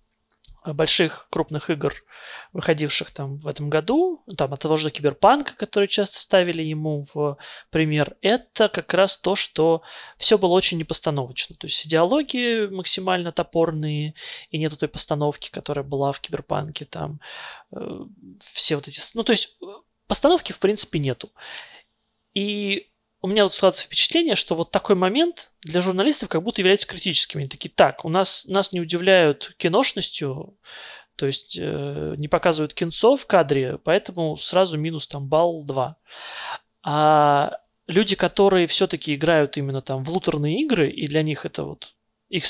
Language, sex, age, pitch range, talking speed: Russian, male, 20-39, 155-200 Hz, 155 wpm